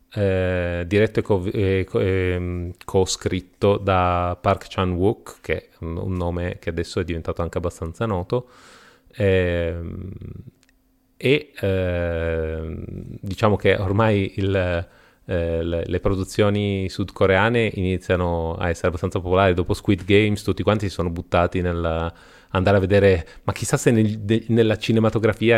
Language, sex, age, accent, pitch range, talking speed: Italian, male, 30-49, native, 90-110 Hz, 135 wpm